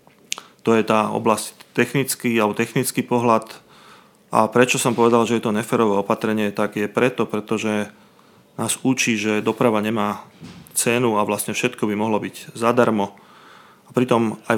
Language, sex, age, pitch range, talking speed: Slovak, male, 30-49, 105-120 Hz, 150 wpm